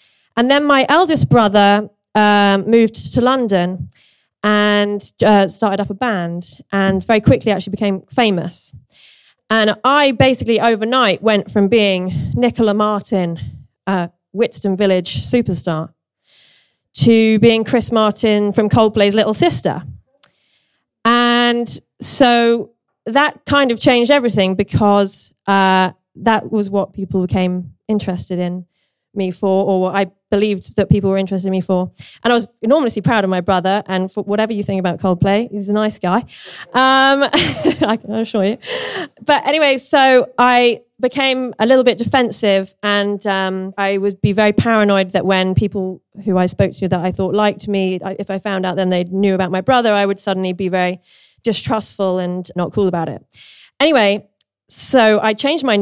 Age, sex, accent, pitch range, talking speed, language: 20-39, female, British, 190-230 Hz, 160 wpm, English